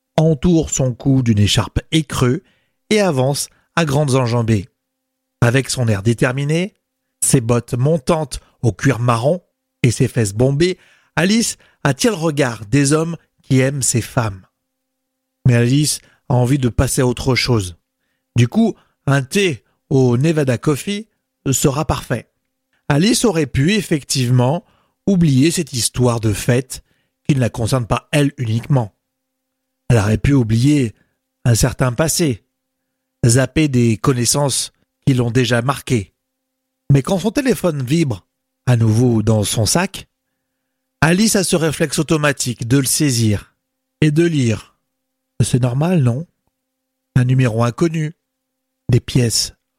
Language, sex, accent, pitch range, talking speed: French, male, French, 120-175 Hz, 135 wpm